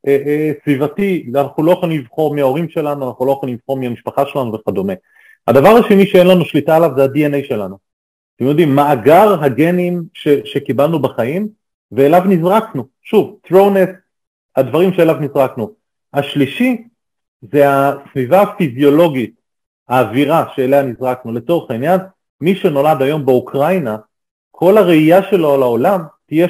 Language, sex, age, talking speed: Hebrew, male, 40-59, 130 wpm